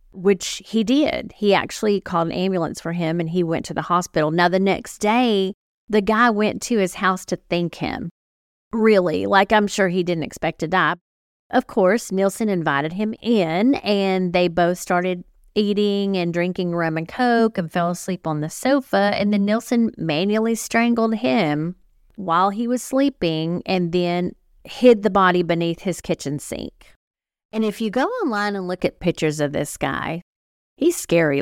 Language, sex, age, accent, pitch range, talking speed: English, female, 40-59, American, 160-205 Hz, 180 wpm